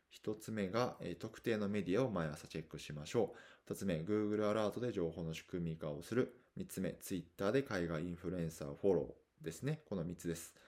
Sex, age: male, 20-39